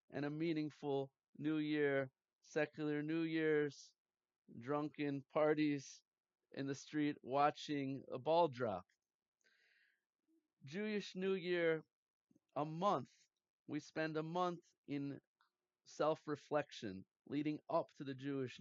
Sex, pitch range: male, 135-160 Hz